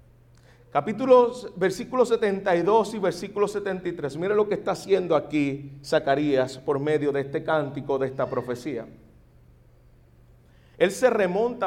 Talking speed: 125 wpm